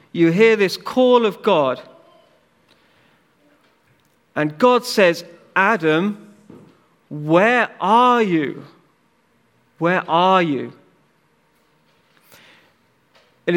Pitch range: 150-205 Hz